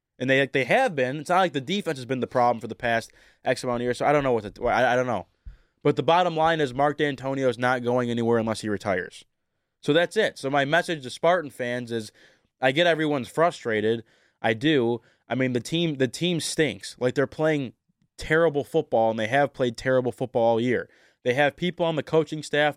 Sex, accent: male, American